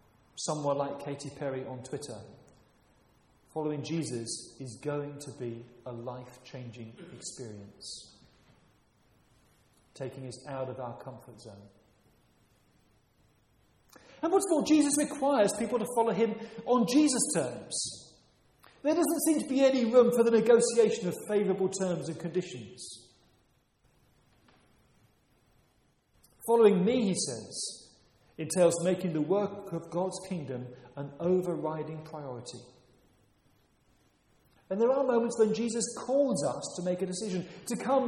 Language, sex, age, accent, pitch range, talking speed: English, male, 40-59, British, 130-220 Hz, 125 wpm